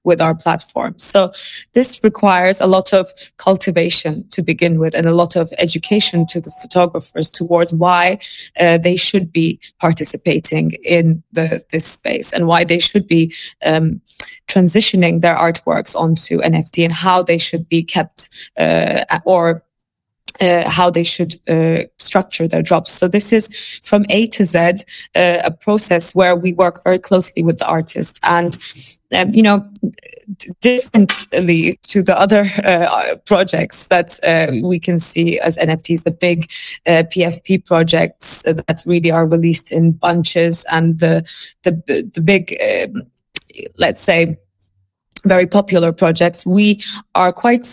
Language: English